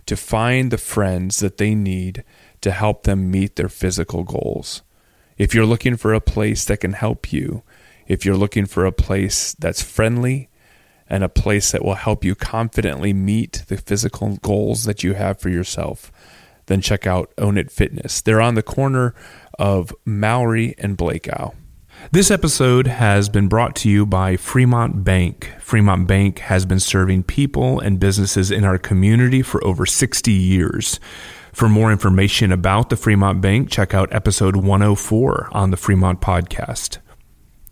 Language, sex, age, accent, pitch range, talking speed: English, male, 30-49, American, 95-110 Hz, 165 wpm